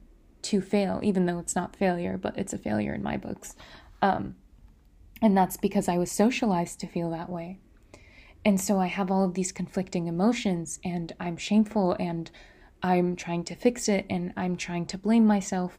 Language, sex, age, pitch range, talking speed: English, female, 20-39, 180-210 Hz, 185 wpm